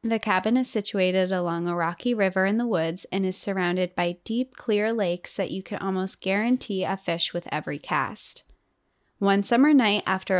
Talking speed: 185 wpm